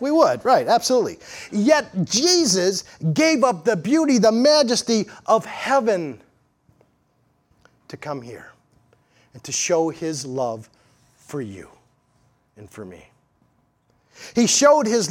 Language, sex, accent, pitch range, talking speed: English, male, American, 155-230 Hz, 120 wpm